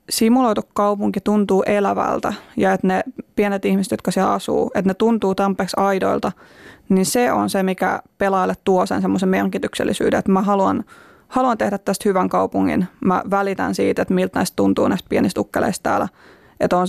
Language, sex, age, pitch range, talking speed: Finnish, female, 20-39, 185-205 Hz, 165 wpm